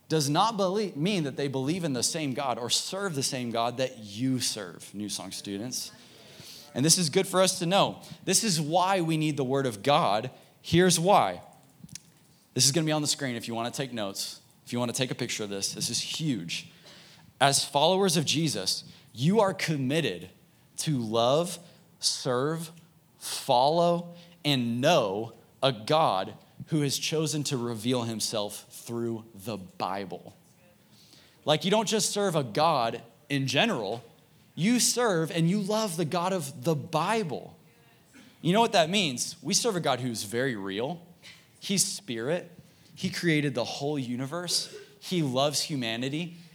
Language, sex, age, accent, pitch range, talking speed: English, male, 30-49, American, 130-175 Hz, 170 wpm